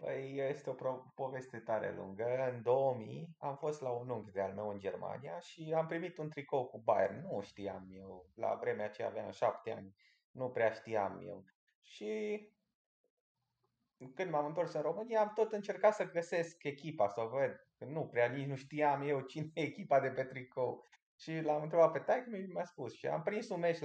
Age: 20-39